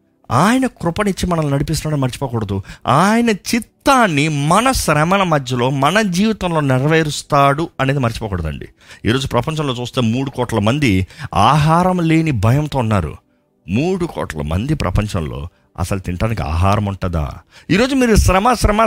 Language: Telugu